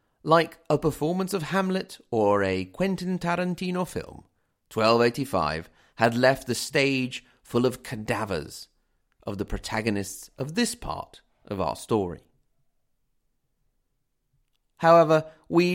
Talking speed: 110 wpm